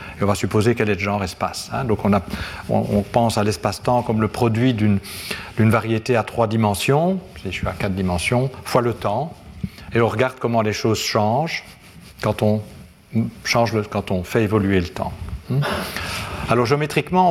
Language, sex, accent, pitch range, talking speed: French, male, French, 105-130 Hz, 190 wpm